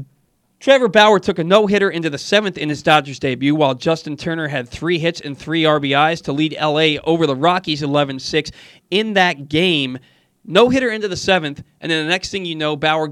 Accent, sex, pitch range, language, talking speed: American, male, 145-190 Hz, English, 195 wpm